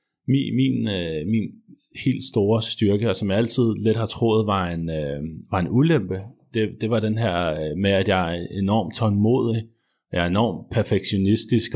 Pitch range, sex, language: 95-115 Hz, male, English